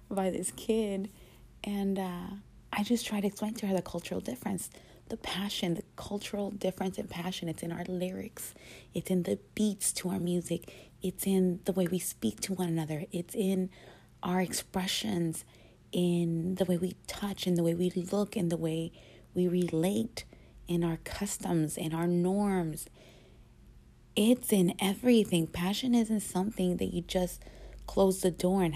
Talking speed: 165 wpm